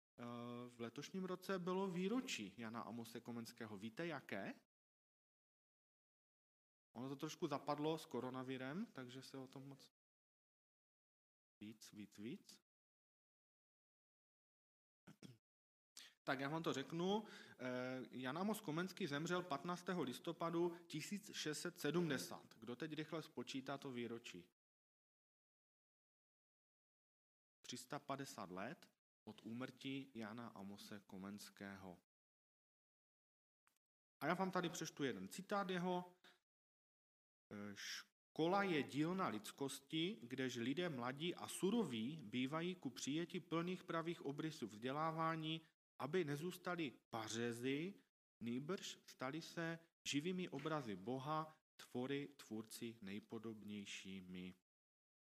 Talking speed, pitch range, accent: 90 wpm, 115-170 Hz, native